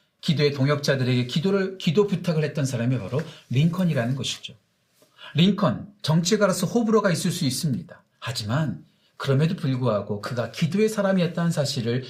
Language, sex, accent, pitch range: Korean, male, native, 140-200 Hz